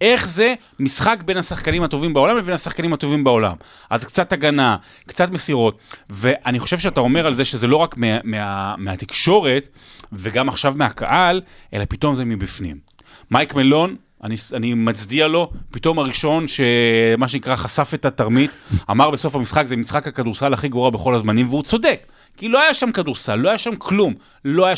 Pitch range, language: 105-150 Hz, Hebrew